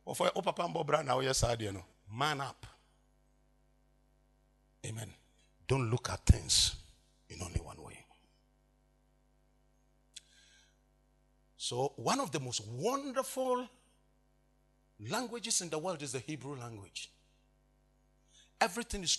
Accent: Nigerian